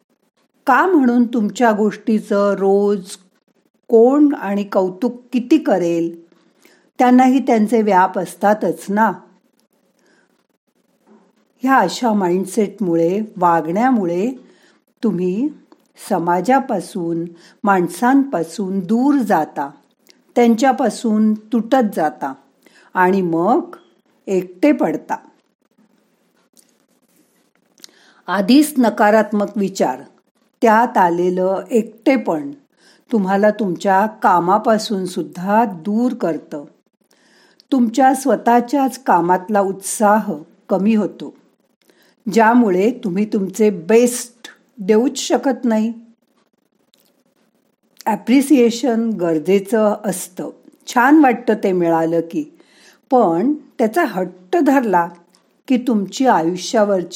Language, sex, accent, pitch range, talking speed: Marathi, female, native, 190-250 Hz, 60 wpm